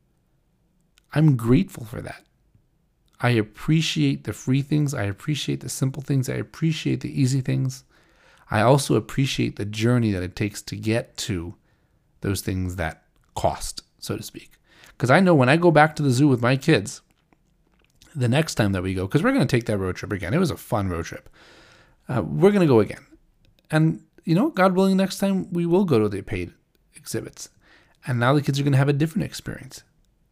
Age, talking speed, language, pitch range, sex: 30-49, 200 wpm, English, 110-150 Hz, male